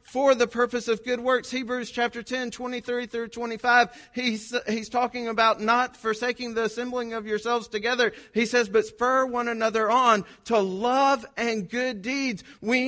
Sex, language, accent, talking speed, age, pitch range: male, English, American, 170 wpm, 40-59, 200-245 Hz